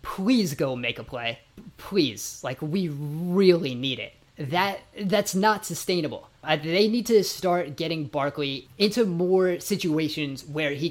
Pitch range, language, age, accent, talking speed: 140-180 Hz, English, 20-39, American, 150 wpm